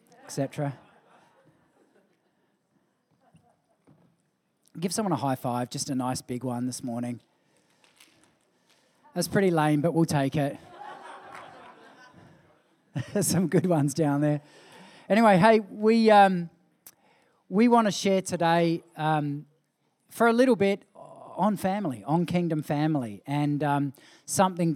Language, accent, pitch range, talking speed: English, Australian, 145-180 Hz, 115 wpm